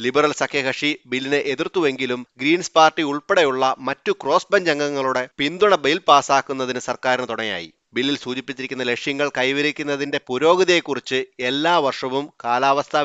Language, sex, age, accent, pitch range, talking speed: Malayalam, male, 30-49, native, 125-145 Hz, 110 wpm